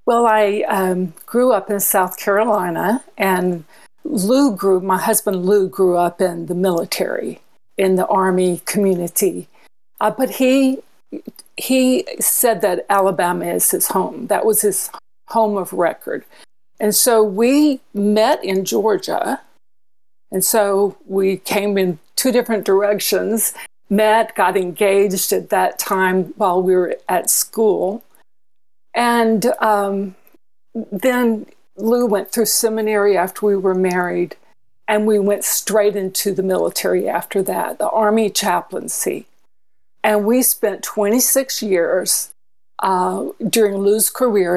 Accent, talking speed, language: American, 130 wpm, English